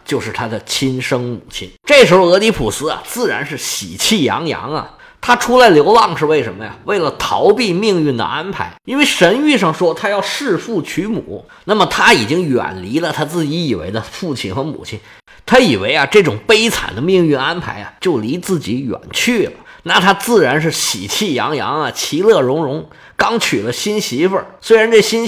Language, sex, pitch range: Chinese, male, 175-240 Hz